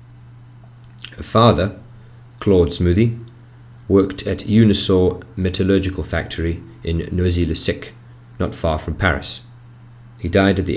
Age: 30-49